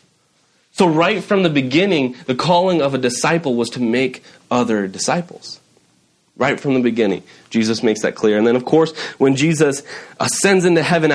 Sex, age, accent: male, 30-49, American